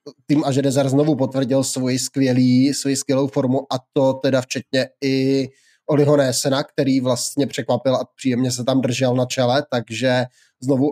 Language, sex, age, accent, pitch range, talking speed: Czech, male, 20-39, native, 135-155 Hz, 155 wpm